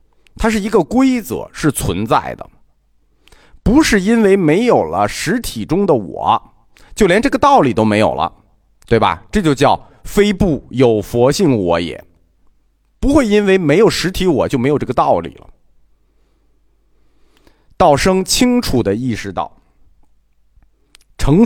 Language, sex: Chinese, male